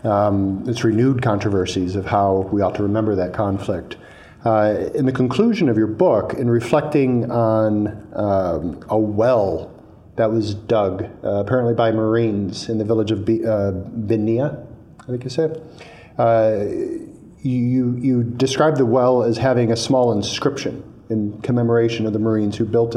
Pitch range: 105-125 Hz